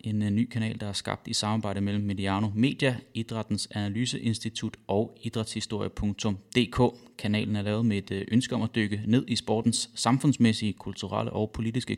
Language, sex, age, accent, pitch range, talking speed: English, male, 30-49, Danish, 100-115 Hz, 155 wpm